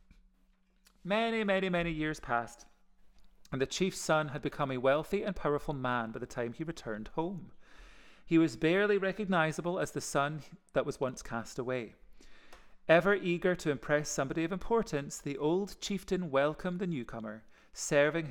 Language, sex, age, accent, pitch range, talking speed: English, male, 40-59, British, 135-180 Hz, 155 wpm